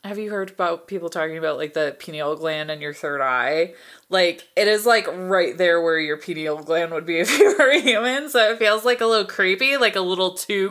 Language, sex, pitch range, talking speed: English, female, 160-230 Hz, 240 wpm